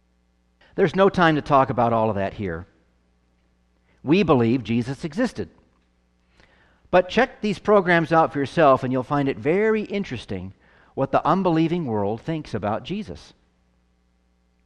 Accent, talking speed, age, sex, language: American, 140 wpm, 50-69, male, English